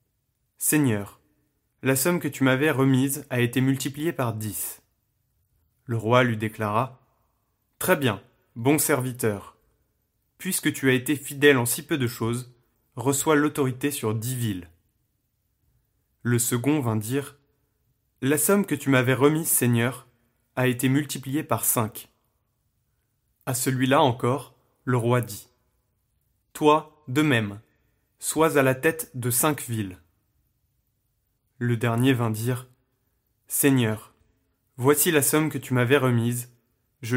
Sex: male